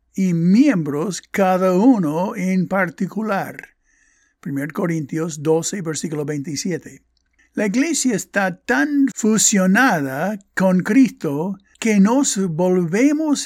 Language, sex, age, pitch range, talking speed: Spanish, male, 60-79, 170-215 Hz, 95 wpm